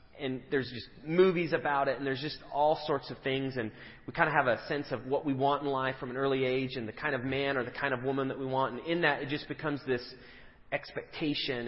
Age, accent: 30-49, American